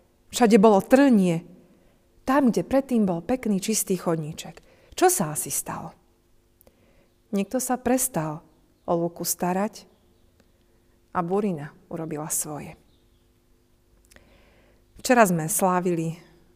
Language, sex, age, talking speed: Slovak, female, 40-59, 100 wpm